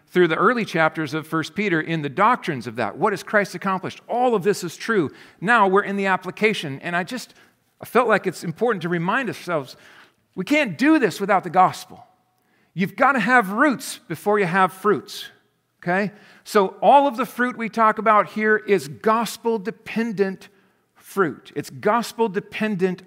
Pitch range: 165-215 Hz